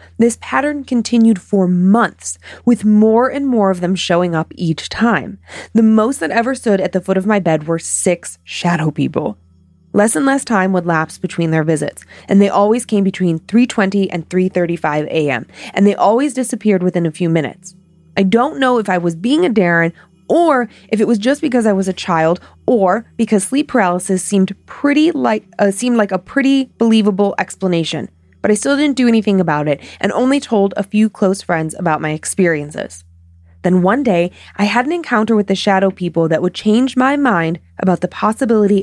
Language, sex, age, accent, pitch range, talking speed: English, female, 20-39, American, 160-220 Hz, 190 wpm